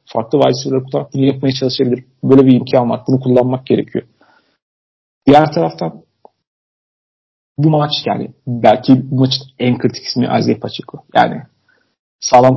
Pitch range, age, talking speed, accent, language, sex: 125-140 Hz, 40-59, 135 wpm, native, Turkish, male